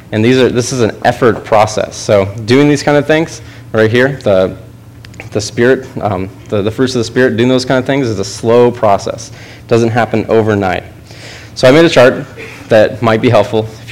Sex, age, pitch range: male, 20-39, 105-120 Hz